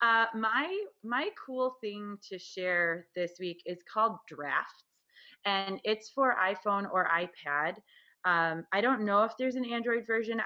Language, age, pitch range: English, 30-49, 165-210 Hz